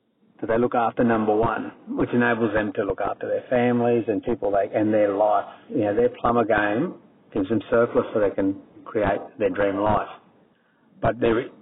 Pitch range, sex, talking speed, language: 105-130 Hz, male, 185 wpm, English